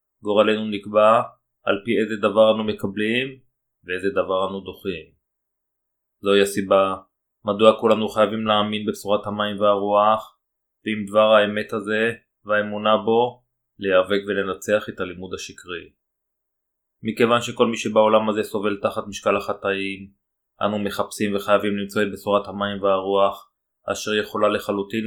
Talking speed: 125 wpm